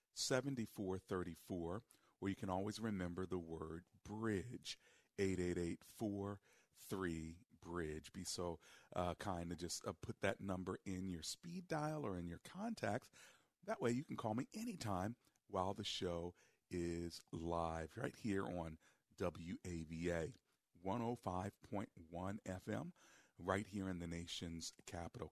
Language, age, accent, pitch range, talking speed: English, 40-59, American, 85-110 Hz, 145 wpm